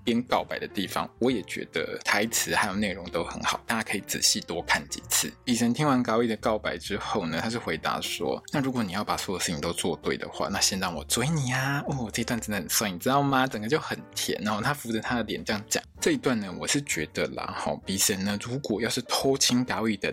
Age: 20-39